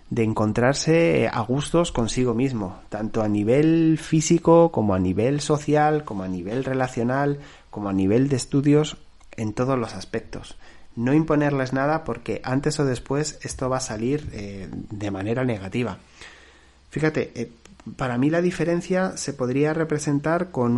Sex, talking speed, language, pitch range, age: male, 150 wpm, Spanish, 105-145 Hz, 30-49